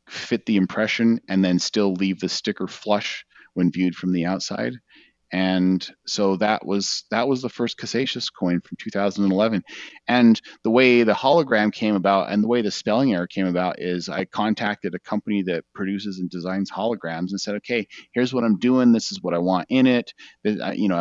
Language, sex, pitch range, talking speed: English, male, 95-115 Hz, 195 wpm